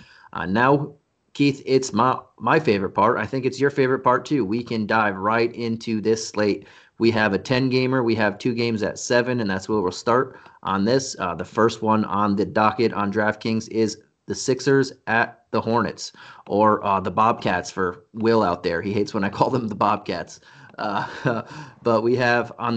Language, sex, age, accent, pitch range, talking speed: English, male, 30-49, American, 110-125 Hz, 200 wpm